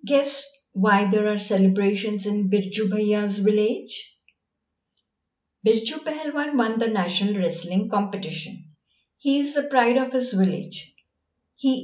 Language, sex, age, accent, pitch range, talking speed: English, female, 50-69, Indian, 190-230 Hz, 120 wpm